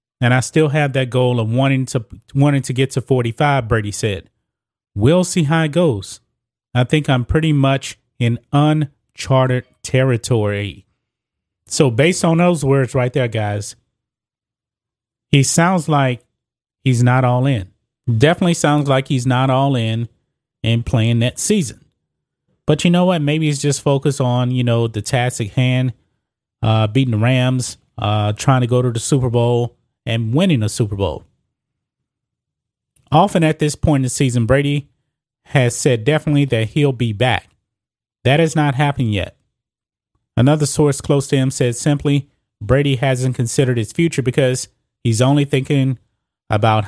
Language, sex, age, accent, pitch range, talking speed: English, male, 30-49, American, 115-145 Hz, 155 wpm